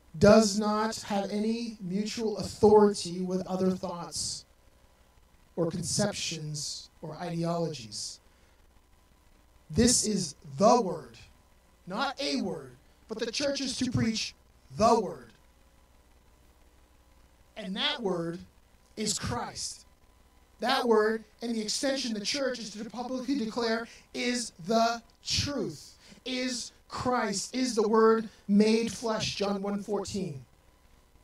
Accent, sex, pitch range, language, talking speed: American, male, 145-225 Hz, English, 110 wpm